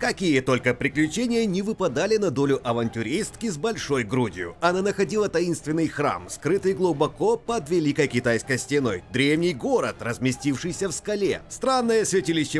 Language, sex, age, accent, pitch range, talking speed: Russian, male, 30-49, native, 125-205 Hz, 135 wpm